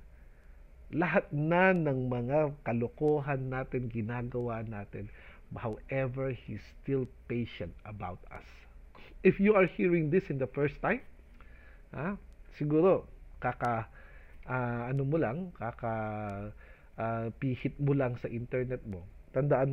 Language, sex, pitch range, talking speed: English, male, 110-185 Hz, 115 wpm